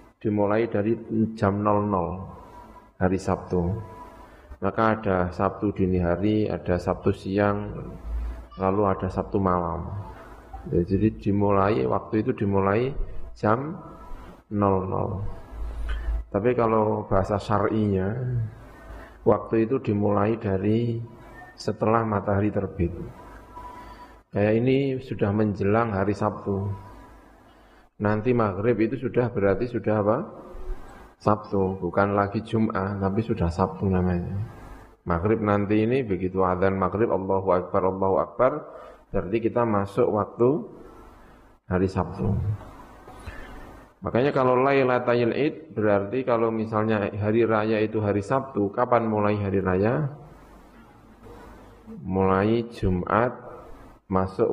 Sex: male